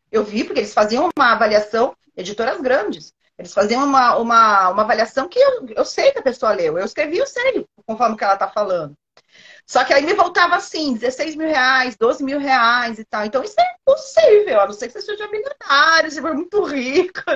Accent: Brazilian